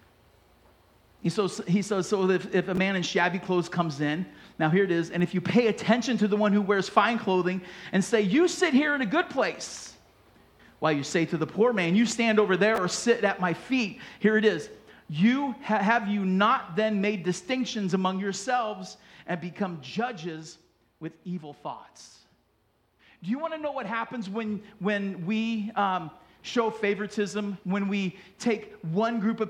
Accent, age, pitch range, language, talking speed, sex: American, 40-59, 185-235 Hz, English, 180 wpm, male